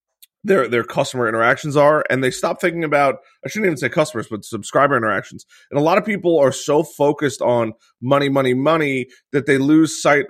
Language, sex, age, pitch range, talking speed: English, male, 30-49, 120-160 Hz, 200 wpm